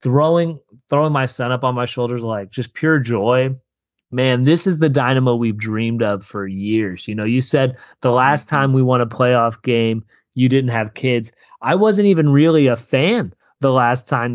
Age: 30-49